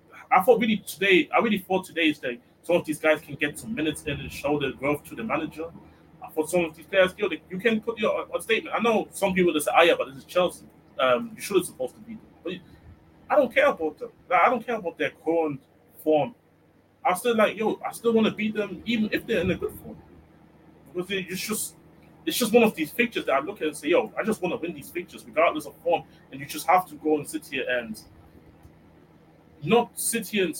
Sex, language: male, English